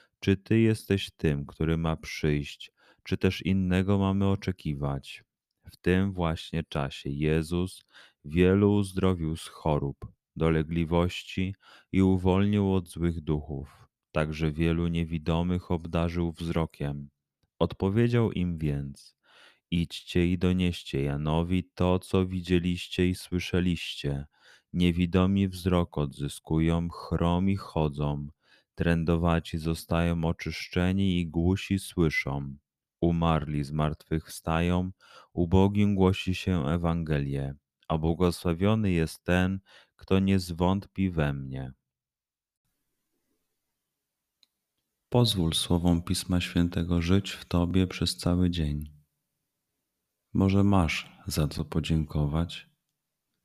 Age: 30-49